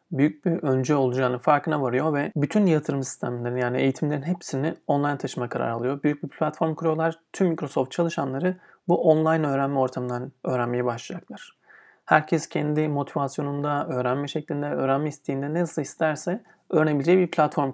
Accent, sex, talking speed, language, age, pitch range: native, male, 145 wpm, Turkish, 40-59, 140-170 Hz